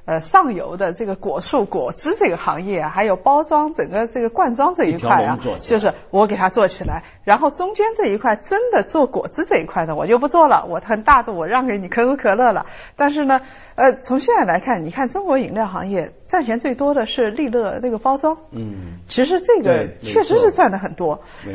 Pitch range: 210-330 Hz